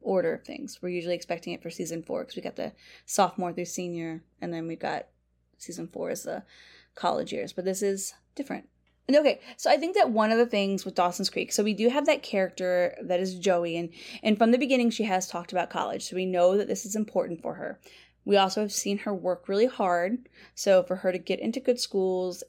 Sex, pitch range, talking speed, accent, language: female, 180-240 Hz, 235 wpm, American, English